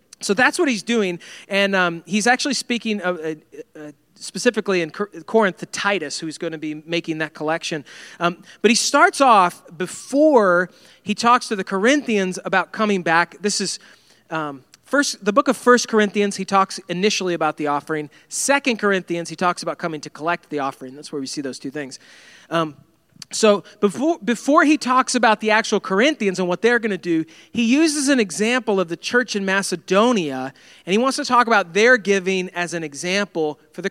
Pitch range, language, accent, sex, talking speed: 165-225 Hz, English, American, male, 195 wpm